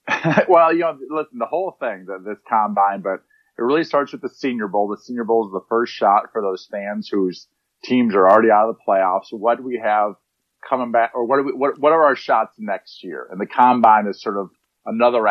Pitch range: 100-130 Hz